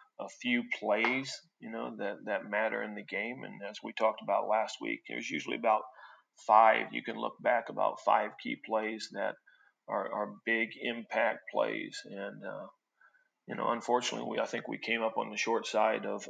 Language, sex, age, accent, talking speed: English, male, 40-59, American, 190 wpm